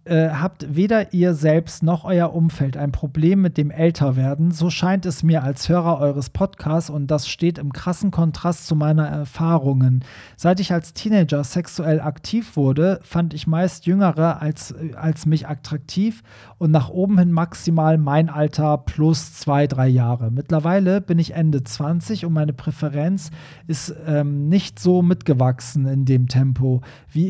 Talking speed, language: 160 wpm, German